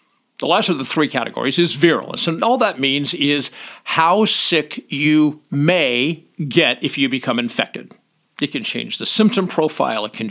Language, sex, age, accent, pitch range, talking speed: English, male, 50-69, American, 140-215 Hz, 175 wpm